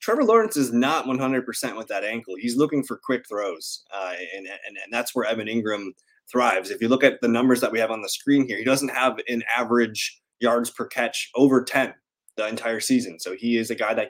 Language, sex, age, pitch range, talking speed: English, male, 20-39, 115-145 Hz, 230 wpm